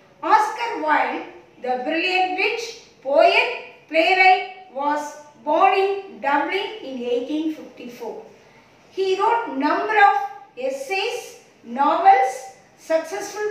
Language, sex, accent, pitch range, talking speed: Tamil, female, native, 270-385 Hz, 90 wpm